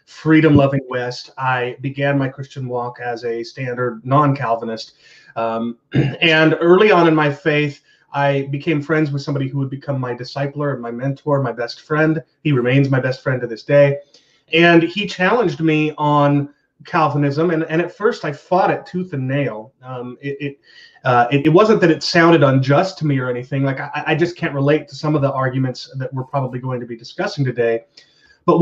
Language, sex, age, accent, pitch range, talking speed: English, male, 30-49, American, 125-155 Hz, 195 wpm